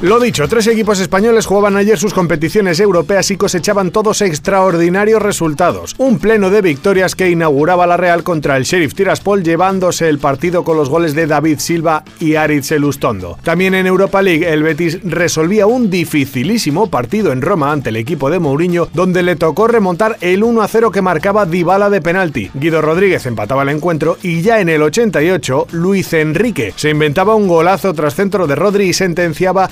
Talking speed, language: 180 wpm, Spanish